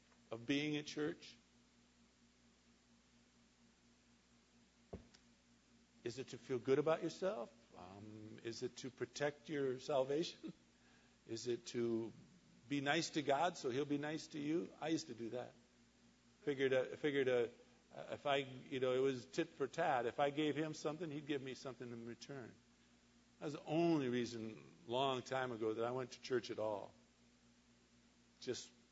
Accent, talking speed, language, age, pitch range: American, 160 wpm, English, 50-69, 115-155 Hz